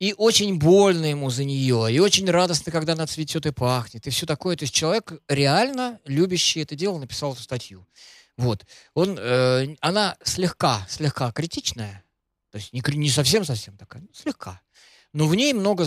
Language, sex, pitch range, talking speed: Russian, male, 125-165 Hz, 165 wpm